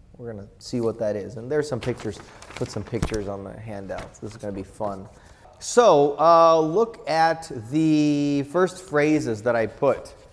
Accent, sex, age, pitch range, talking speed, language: American, male, 30-49, 105-145 Hz, 180 wpm, English